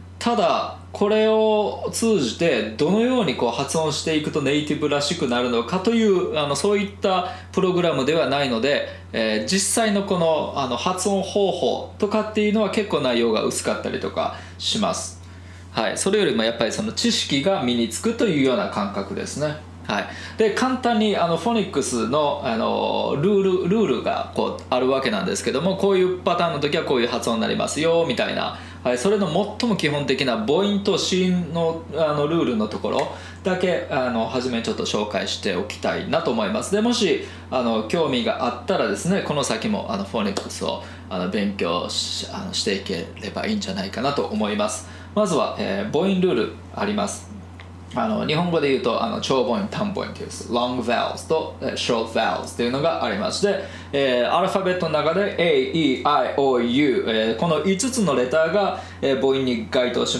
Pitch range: 120-200 Hz